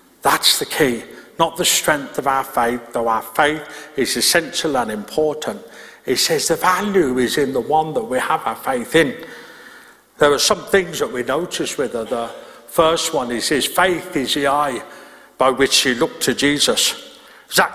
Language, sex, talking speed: English, male, 185 wpm